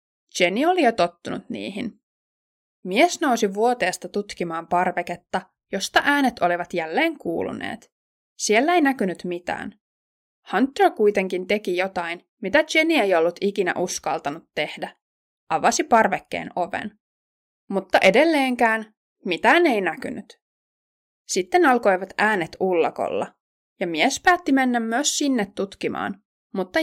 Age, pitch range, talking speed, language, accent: 20-39, 185-275 Hz, 110 wpm, Finnish, native